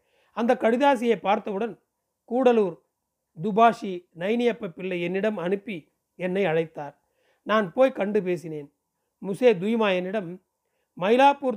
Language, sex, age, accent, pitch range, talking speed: Tamil, male, 40-59, native, 190-235 Hz, 100 wpm